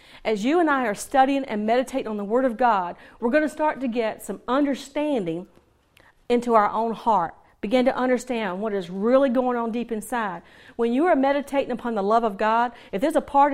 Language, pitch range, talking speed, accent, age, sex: English, 215-270 Hz, 215 wpm, American, 40-59, female